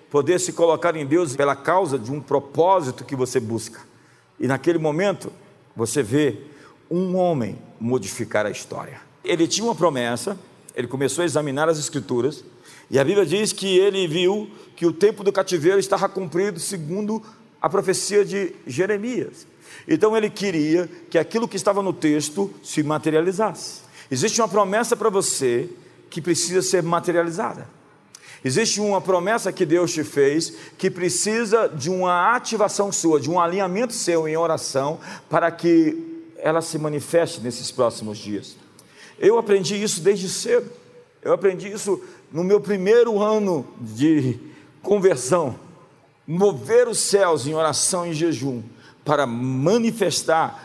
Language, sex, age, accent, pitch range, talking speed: Portuguese, male, 50-69, Brazilian, 145-200 Hz, 145 wpm